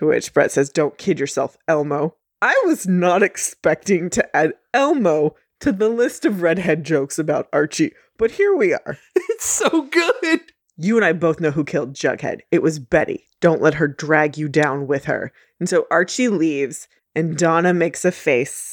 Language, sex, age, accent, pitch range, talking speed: English, female, 20-39, American, 145-185 Hz, 185 wpm